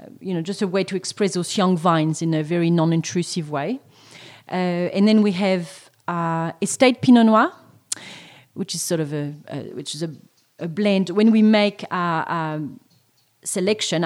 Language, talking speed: English, 175 wpm